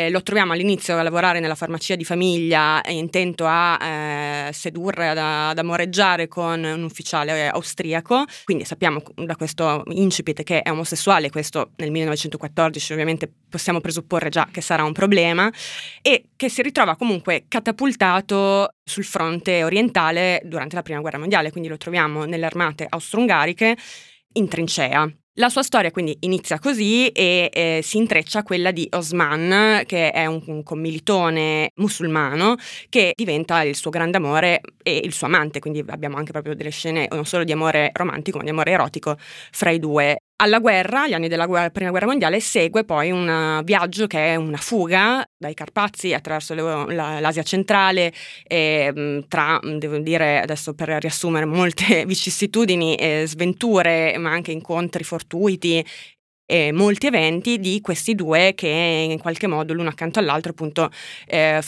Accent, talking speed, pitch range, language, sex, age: native, 160 wpm, 155-190 Hz, Italian, female, 20-39